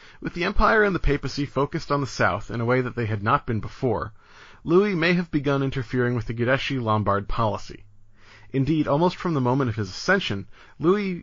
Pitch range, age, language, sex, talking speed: 110-155 Hz, 30-49, English, male, 205 wpm